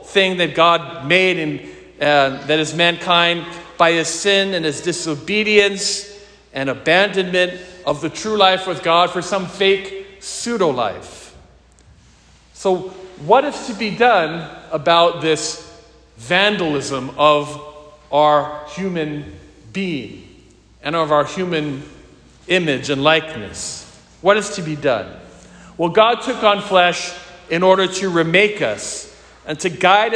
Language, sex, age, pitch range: English, male, 40-59, 155-200 Hz